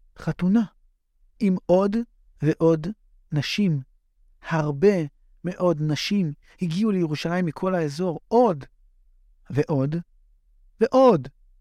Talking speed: 80 wpm